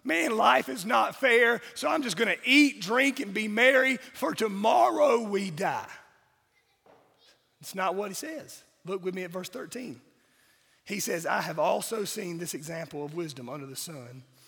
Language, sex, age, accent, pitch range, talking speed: English, male, 30-49, American, 155-210 Hz, 180 wpm